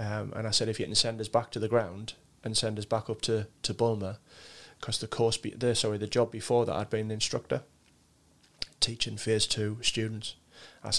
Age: 30-49